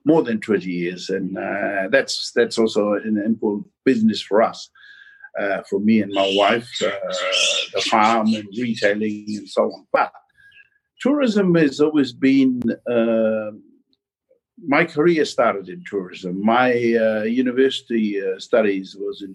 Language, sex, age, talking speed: English, male, 60-79, 145 wpm